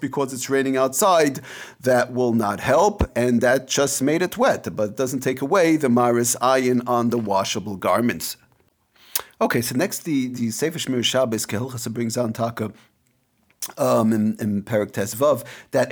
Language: English